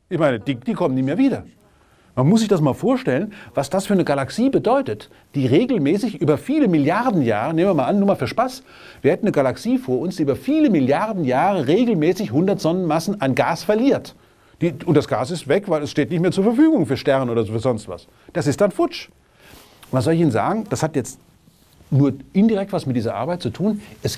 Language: English